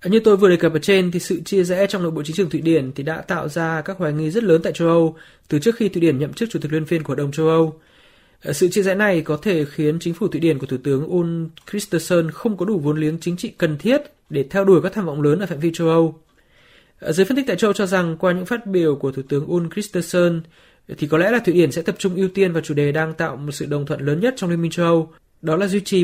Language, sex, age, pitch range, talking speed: Vietnamese, male, 20-39, 155-185 Hz, 300 wpm